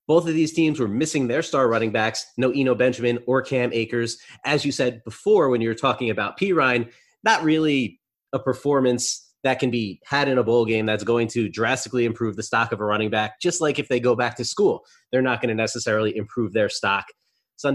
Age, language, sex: 30-49, English, male